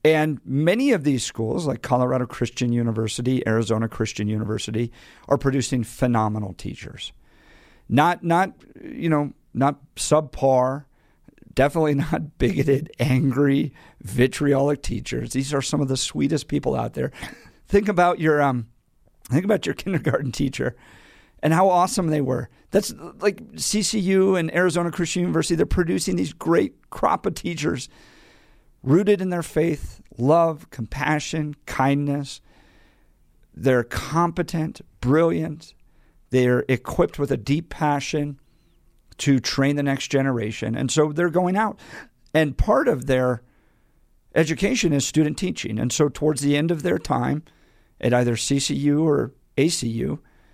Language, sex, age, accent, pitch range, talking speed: English, male, 50-69, American, 125-165 Hz, 135 wpm